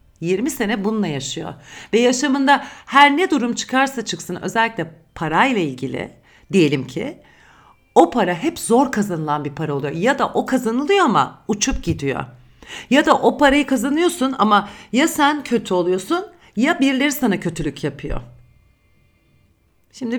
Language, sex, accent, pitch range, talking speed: Turkish, female, native, 160-255 Hz, 140 wpm